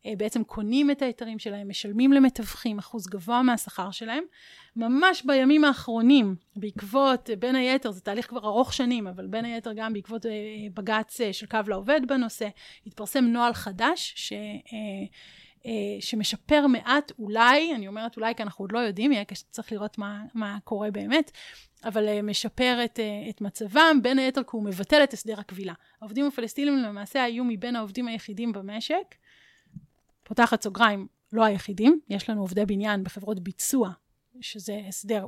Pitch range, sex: 205-245 Hz, female